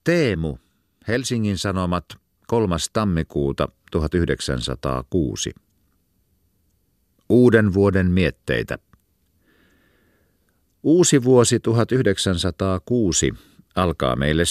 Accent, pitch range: native, 80-105 Hz